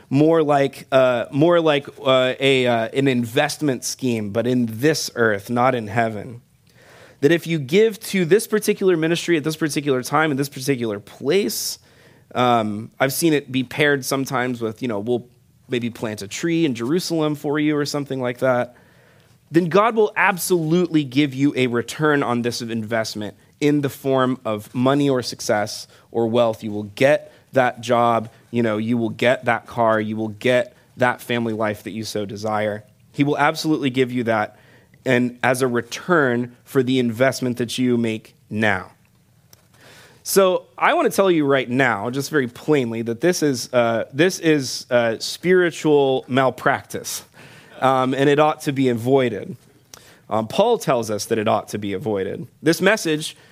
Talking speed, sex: 175 wpm, male